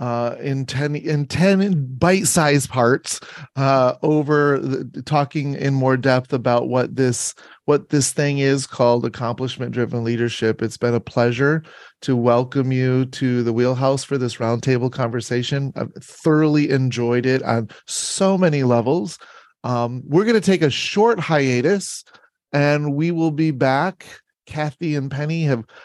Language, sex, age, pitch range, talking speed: English, male, 30-49, 130-170 Hz, 150 wpm